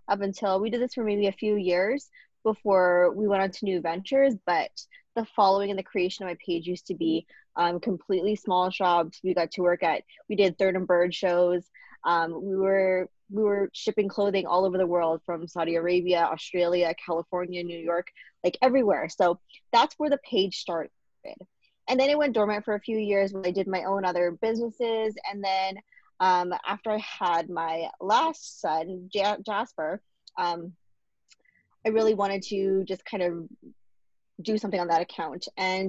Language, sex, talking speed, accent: English, female, 185 wpm, American